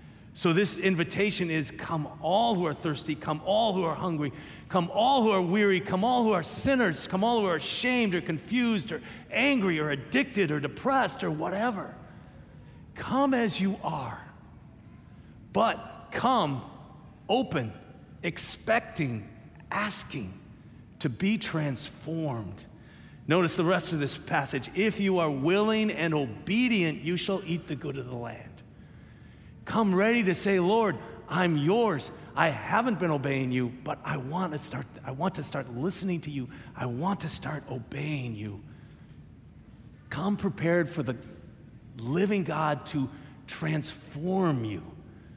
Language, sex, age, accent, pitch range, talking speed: English, male, 40-59, American, 140-195 Hz, 145 wpm